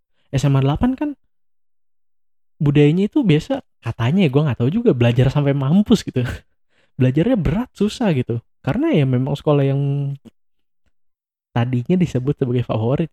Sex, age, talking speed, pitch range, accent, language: male, 20-39, 135 wpm, 125-180 Hz, native, Indonesian